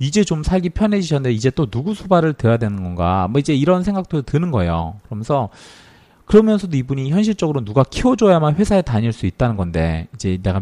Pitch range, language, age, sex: 100-160 Hz, Korean, 40-59, male